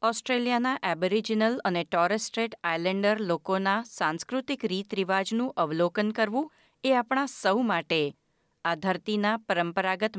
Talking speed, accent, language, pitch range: 105 wpm, native, Gujarati, 175-240 Hz